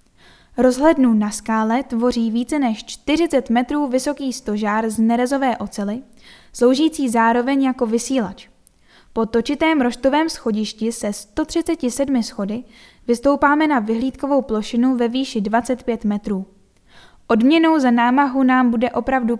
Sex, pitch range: female, 225-275 Hz